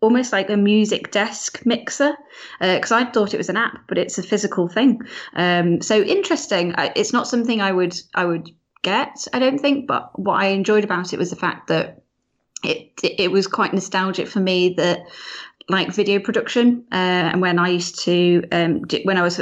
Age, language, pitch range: 20-39, English, 170-195 Hz